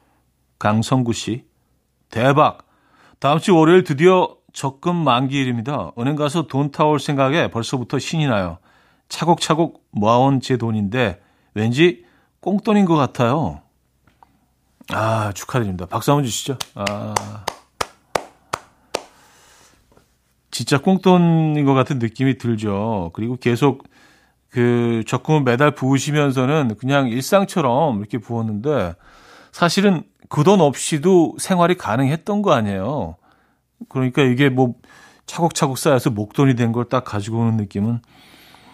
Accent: native